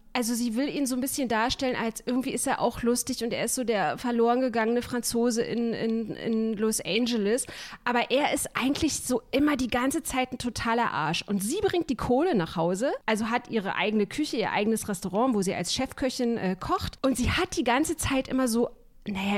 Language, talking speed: German, 215 wpm